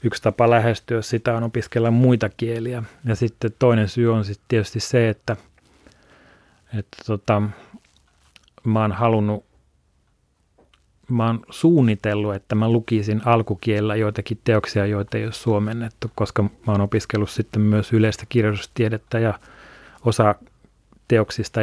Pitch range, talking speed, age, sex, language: 105-115 Hz, 130 wpm, 30-49, male, Finnish